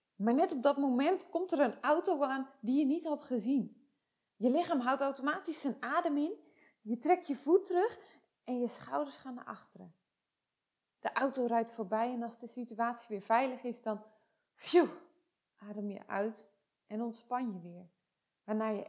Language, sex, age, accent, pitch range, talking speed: Dutch, female, 20-39, Dutch, 210-265 Hz, 170 wpm